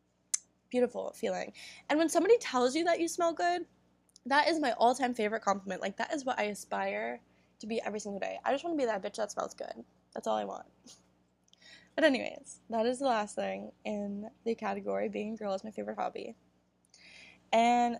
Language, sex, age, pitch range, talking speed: English, female, 10-29, 185-245 Hz, 200 wpm